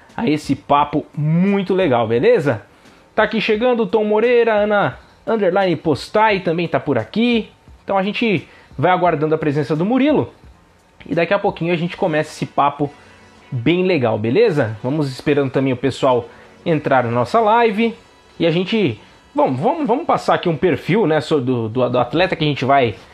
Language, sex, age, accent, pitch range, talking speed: Portuguese, male, 20-39, Brazilian, 145-200 Hz, 175 wpm